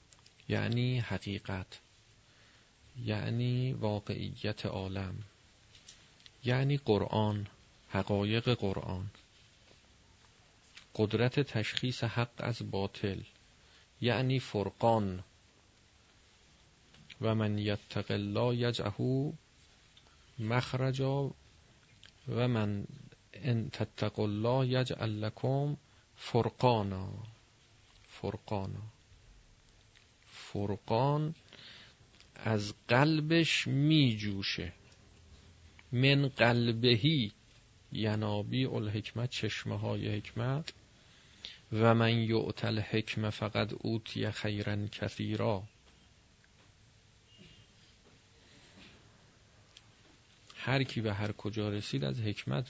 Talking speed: 65 wpm